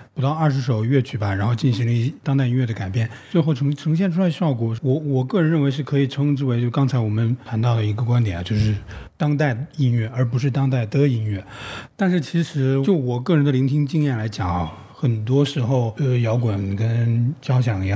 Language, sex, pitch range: Chinese, male, 115-145 Hz